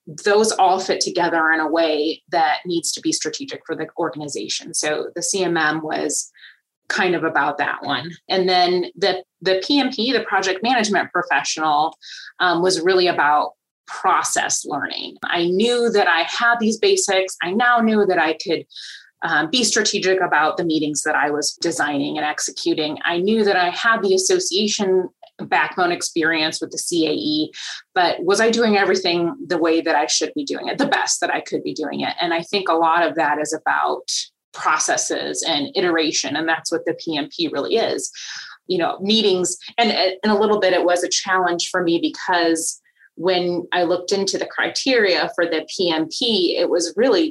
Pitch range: 160-210 Hz